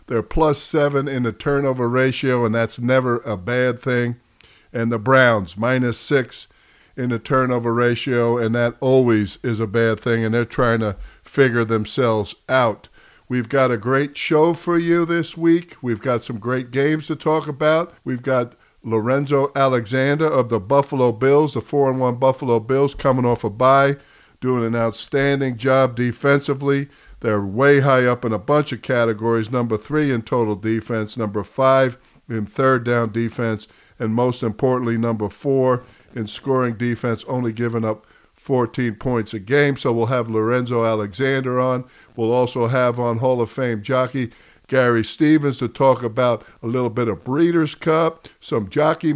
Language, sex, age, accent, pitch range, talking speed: English, male, 50-69, American, 115-140 Hz, 165 wpm